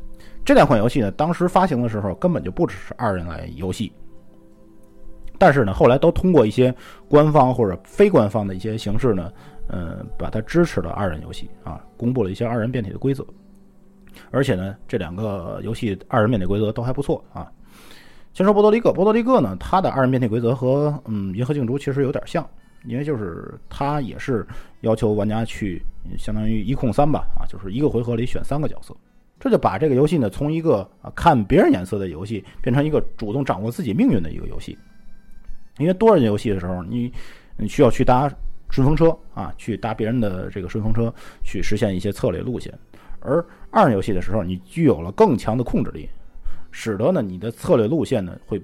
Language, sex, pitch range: Chinese, male, 100-135 Hz